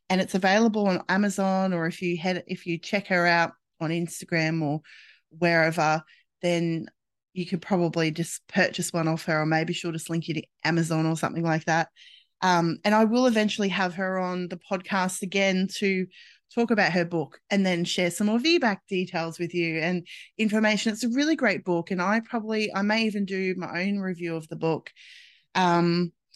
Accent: Australian